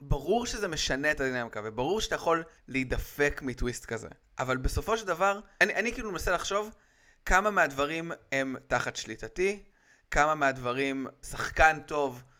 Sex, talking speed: male, 145 wpm